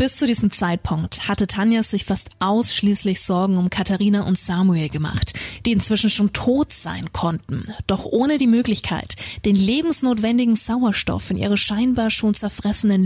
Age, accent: 30-49, German